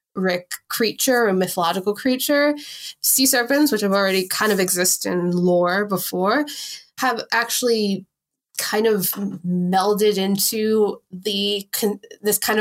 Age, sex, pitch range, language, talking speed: 20-39, female, 180-220 Hz, English, 115 wpm